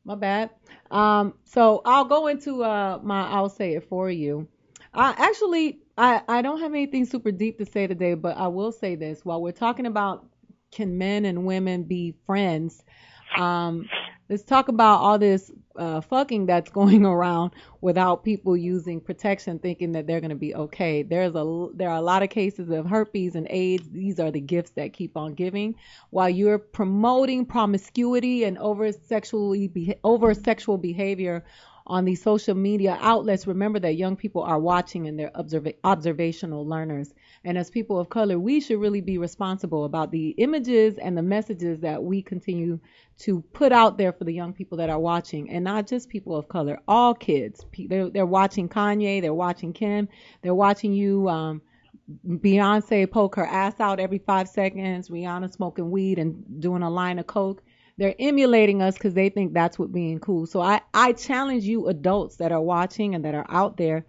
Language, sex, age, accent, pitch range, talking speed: English, female, 30-49, American, 175-210 Hz, 190 wpm